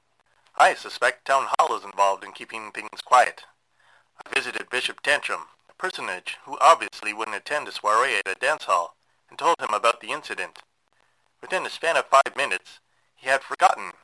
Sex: male